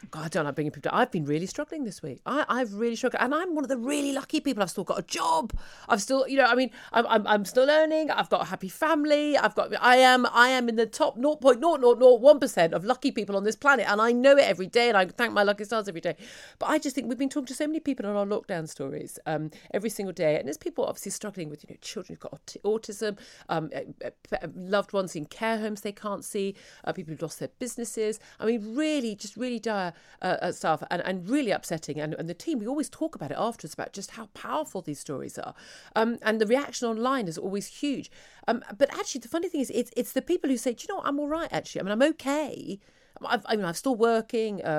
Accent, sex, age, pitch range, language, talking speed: British, female, 40-59, 190-265 Hz, English, 255 wpm